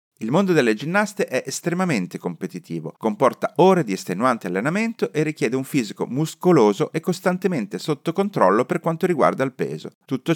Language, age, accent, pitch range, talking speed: Italian, 40-59, native, 120-185 Hz, 155 wpm